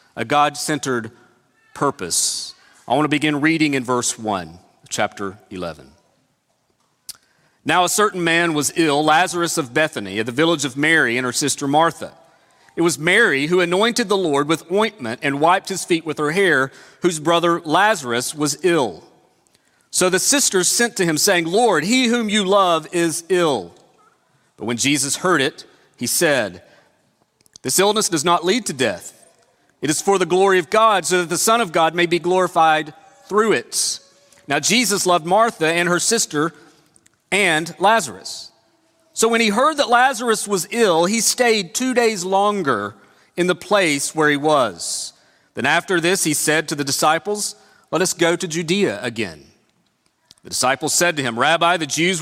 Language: English